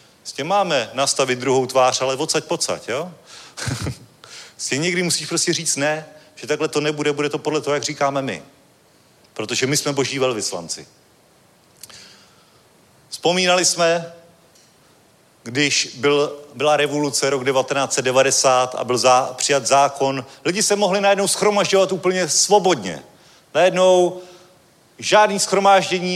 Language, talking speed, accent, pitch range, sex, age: Czech, 125 wpm, native, 140-185 Hz, male, 40-59